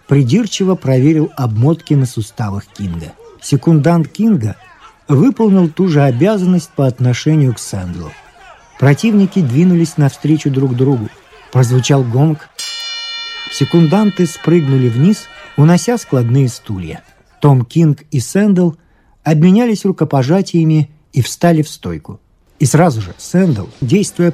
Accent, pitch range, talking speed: native, 130-195 Hz, 110 wpm